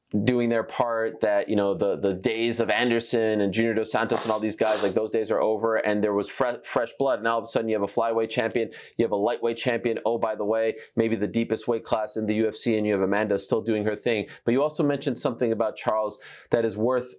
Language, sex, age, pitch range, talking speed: English, male, 30-49, 115-140 Hz, 260 wpm